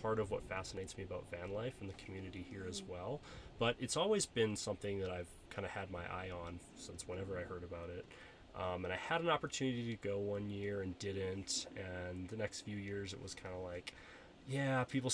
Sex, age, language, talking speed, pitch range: male, 20-39, English, 225 wpm, 90-110 Hz